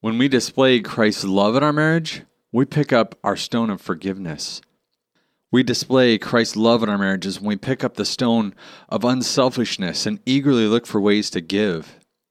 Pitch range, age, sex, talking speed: 100-130 Hz, 40-59, male, 180 wpm